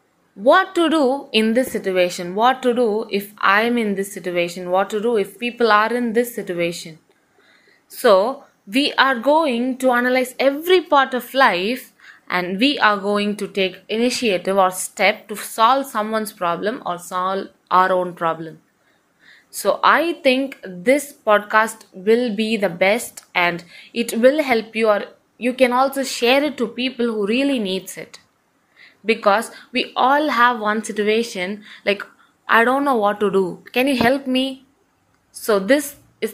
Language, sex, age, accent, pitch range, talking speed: English, female, 20-39, Indian, 195-245 Hz, 160 wpm